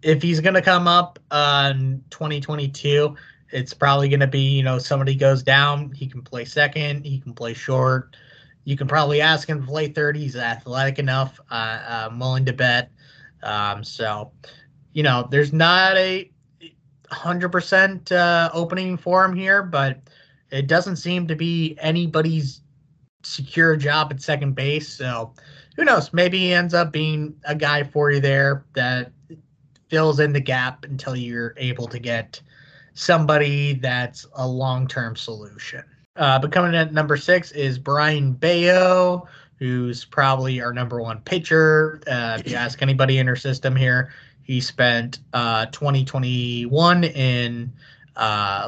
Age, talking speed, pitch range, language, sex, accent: 20-39, 155 wpm, 125-155 Hz, English, male, American